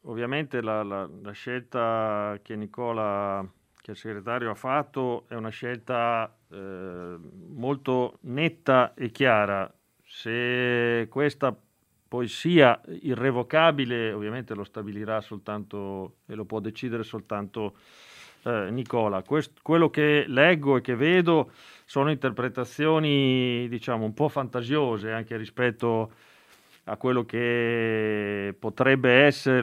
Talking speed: 115 wpm